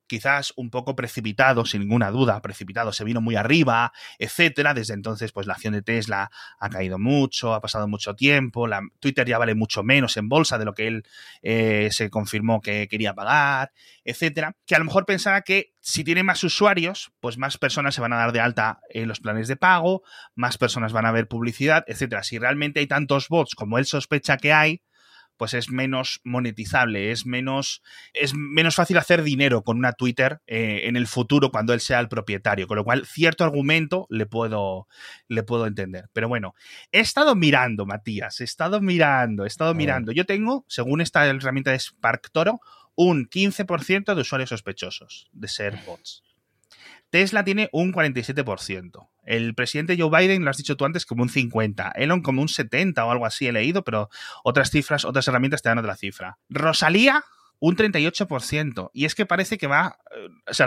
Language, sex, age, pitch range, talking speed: Spanish, male, 30-49, 115-160 Hz, 190 wpm